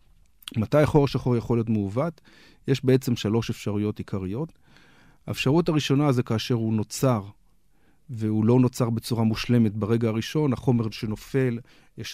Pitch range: 110-130 Hz